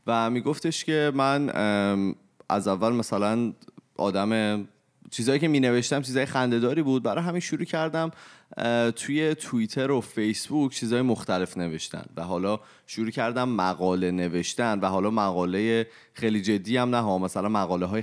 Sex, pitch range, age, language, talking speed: male, 95-120 Hz, 30-49, Persian, 140 wpm